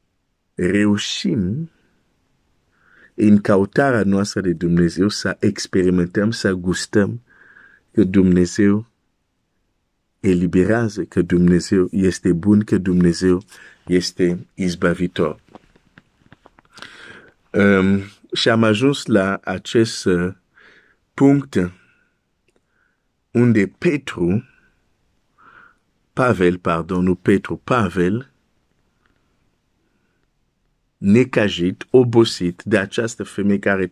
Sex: male